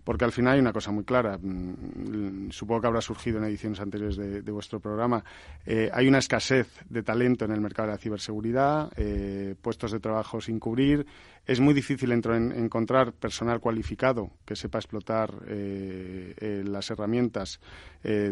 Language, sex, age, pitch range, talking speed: Spanish, male, 40-59, 105-125 Hz, 175 wpm